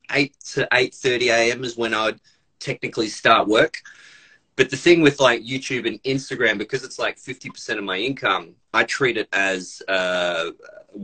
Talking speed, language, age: 165 wpm, English, 30-49